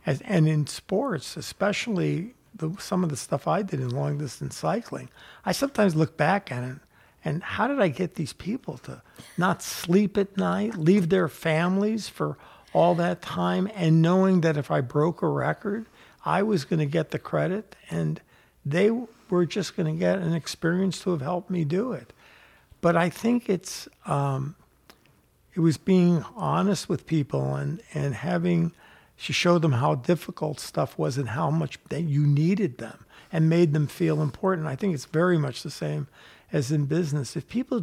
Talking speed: 180 wpm